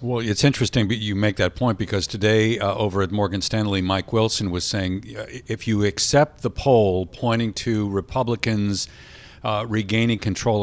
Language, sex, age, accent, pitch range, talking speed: English, male, 50-69, American, 95-110 Hz, 175 wpm